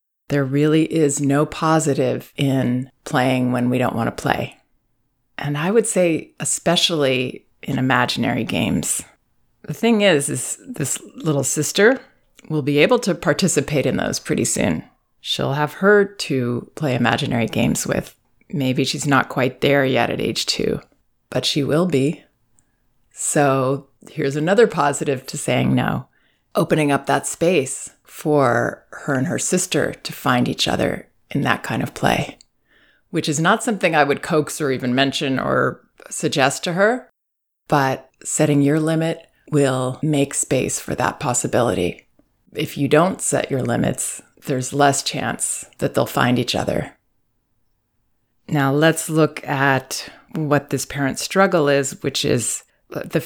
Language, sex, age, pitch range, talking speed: English, female, 30-49, 130-160 Hz, 150 wpm